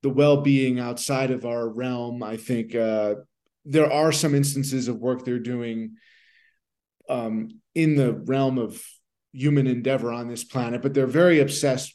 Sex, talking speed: male, 155 wpm